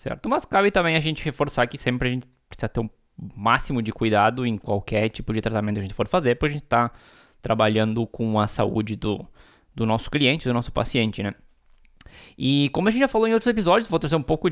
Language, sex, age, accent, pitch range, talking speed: Portuguese, male, 20-39, Brazilian, 115-160 Hz, 240 wpm